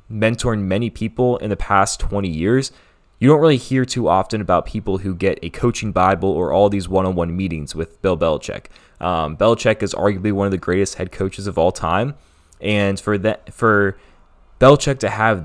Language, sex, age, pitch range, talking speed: English, male, 20-39, 95-115 Hz, 190 wpm